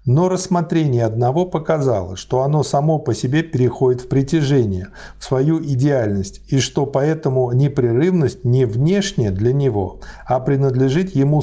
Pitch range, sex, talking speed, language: 120-150 Hz, male, 135 wpm, Russian